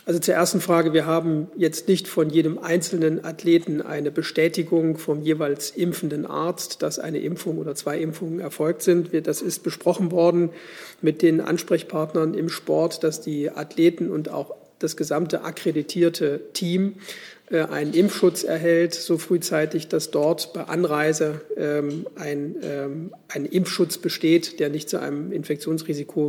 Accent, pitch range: German, 155-175 Hz